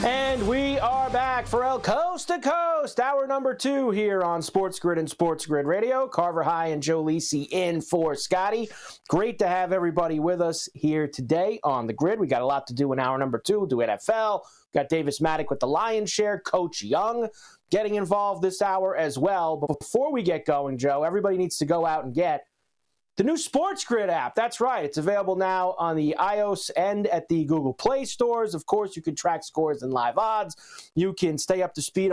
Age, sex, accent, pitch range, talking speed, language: 30-49, male, American, 160-230 Hz, 215 wpm, English